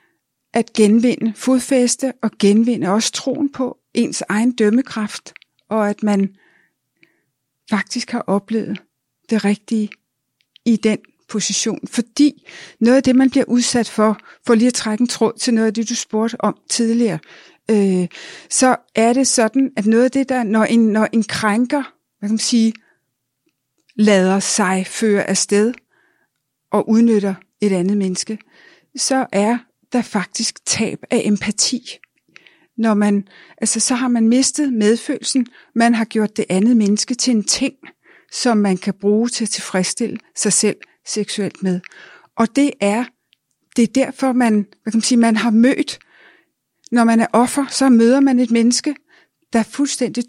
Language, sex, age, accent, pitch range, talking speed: Danish, female, 60-79, native, 210-245 Hz, 155 wpm